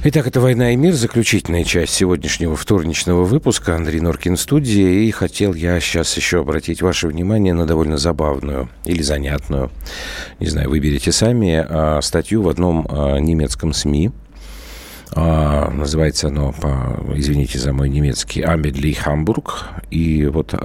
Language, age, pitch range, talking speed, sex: Russian, 50-69, 75-100 Hz, 130 wpm, male